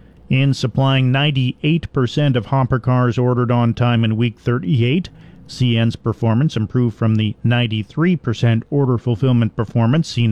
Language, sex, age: English, male, 40-59